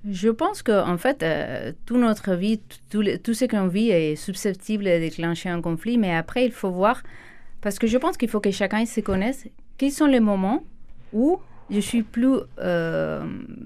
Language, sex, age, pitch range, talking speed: French, female, 30-49, 180-235 Hz, 200 wpm